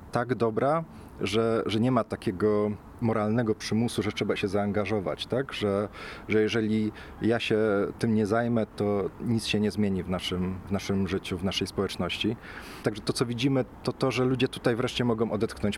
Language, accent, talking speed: Polish, native, 180 wpm